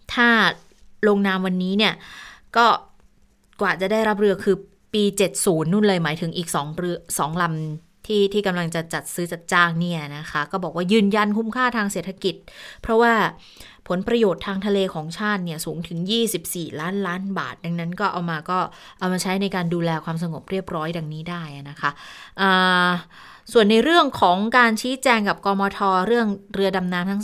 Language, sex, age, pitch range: Thai, female, 20-39, 170-210 Hz